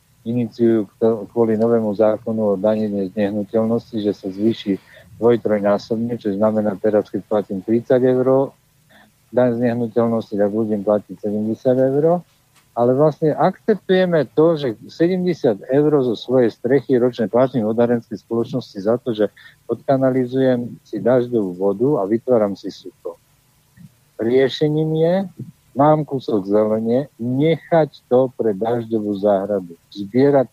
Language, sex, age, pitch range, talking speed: Slovak, male, 50-69, 105-130 Hz, 130 wpm